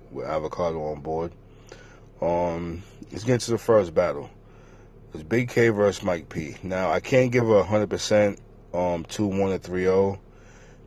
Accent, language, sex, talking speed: American, English, male, 155 wpm